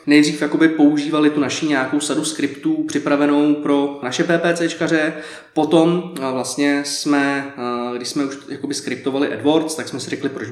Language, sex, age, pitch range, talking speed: Czech, male, 20-39, 145-185 Hz, 145 wpm